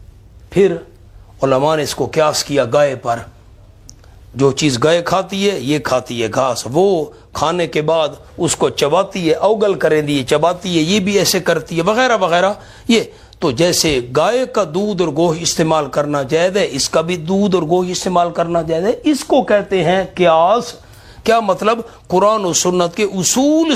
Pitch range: 150-210 Hz